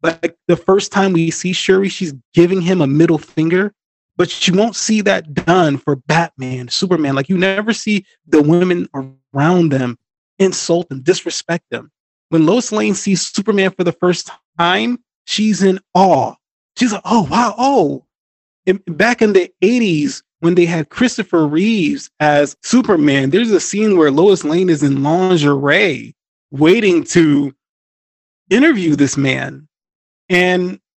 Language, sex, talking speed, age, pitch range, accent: English, male, 150 wpm, 20-39, 150-195 Hz, American